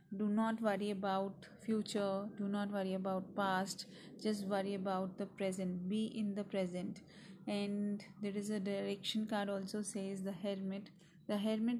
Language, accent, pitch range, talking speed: English, Indian, 195-210 Hz, 160 wpm